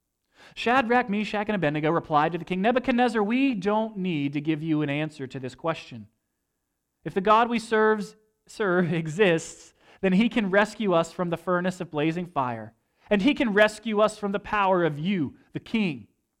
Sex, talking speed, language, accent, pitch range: male, 180 wpm, English, American, 135-220 Hz